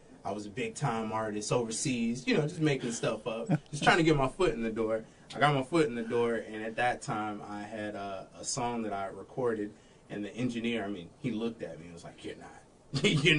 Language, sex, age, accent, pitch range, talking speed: English, male, 20-39, American, 100-125 Hz, 245 wpm